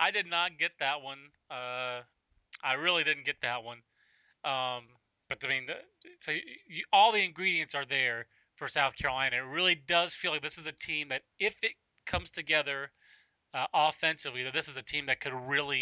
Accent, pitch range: American, 125-155 Hz